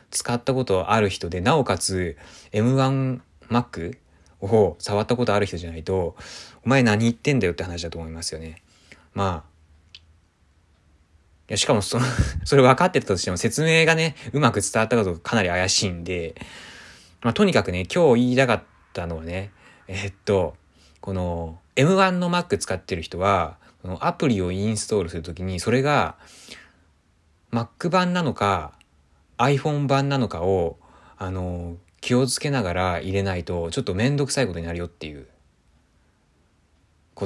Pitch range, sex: 85-120 Hz, male